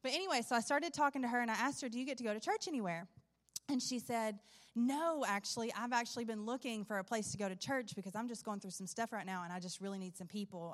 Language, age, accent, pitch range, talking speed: English, 30-49, American, 190-240 Hz, 290 wpm